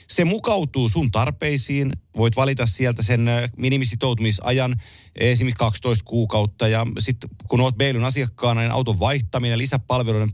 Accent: native